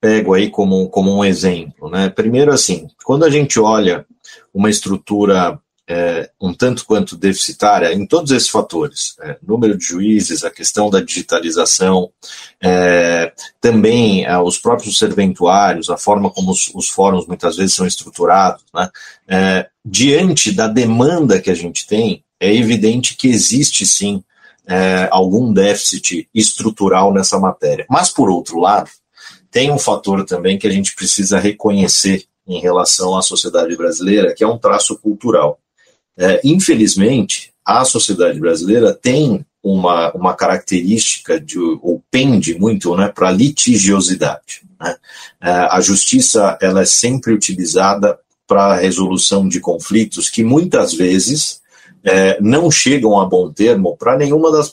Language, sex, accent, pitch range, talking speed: Portuguese, male, Brazilian, 95-120 Hz, 135 wpm